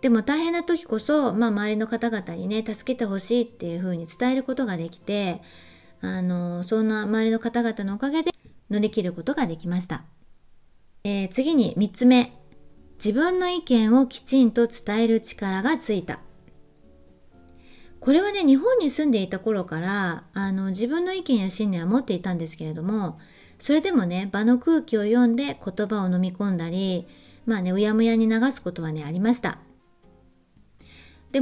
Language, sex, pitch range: Japanese, female, 185-250 Hz